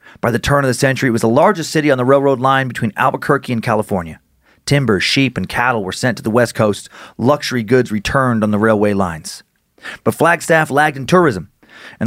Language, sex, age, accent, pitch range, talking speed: English, male, 30-49, American, 115-150 Hz, 210 wpm